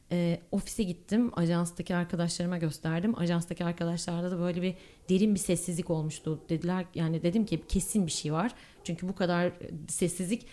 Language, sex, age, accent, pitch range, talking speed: Turkish, female, 30-49, native, 170-220 Hz, 155 wpm